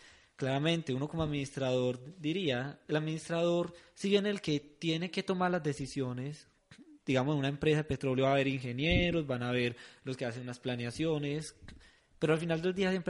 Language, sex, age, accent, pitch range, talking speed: Spanish, male, 20-39, Colombian, 135-165 Hz, 185 wpm